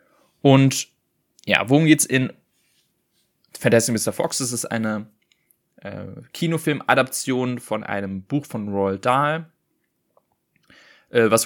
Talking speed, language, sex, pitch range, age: 110 wpm, German, male, 100-125 Hz, 20-39